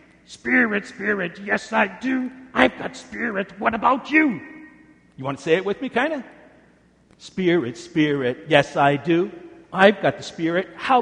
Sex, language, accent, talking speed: male, English, American, 165 wpm